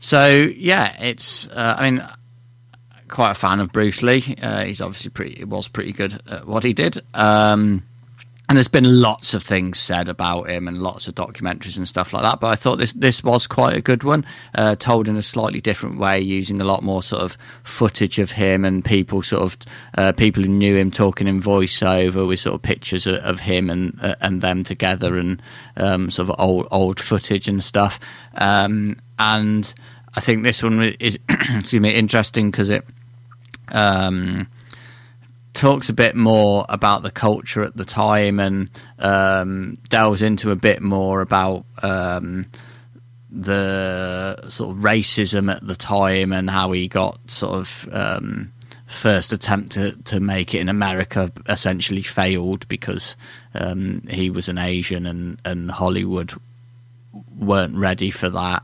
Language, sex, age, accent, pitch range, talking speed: English, male, 30-49, British, 95-120 Hz, 170 wpm